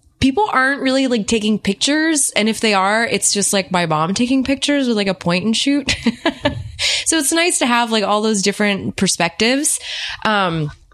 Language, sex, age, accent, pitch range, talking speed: English, female, 20-39, American, 160-205 Hz, 185 wpm